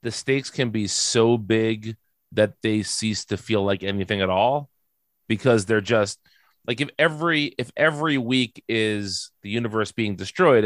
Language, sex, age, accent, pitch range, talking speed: English, male, 30-49, American, 105-125 Hz, 165 wpm